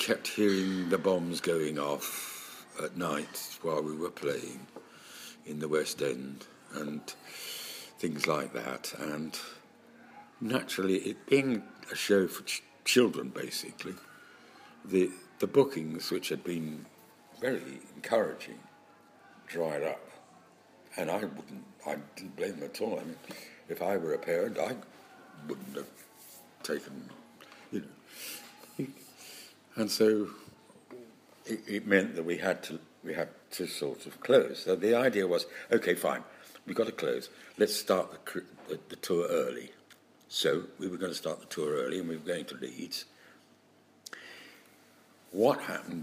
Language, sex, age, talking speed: English, male, 60-79, 145 wpm